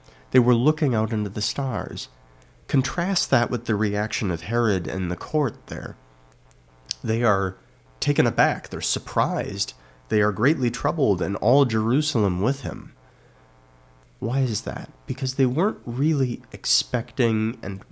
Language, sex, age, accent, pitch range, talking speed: English, male, 30-49, American, 80-125 Hz, 140 wpm